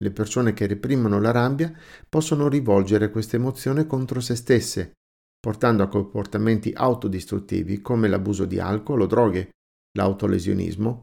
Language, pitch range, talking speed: Italian, 95-125 Hz, 130 wpm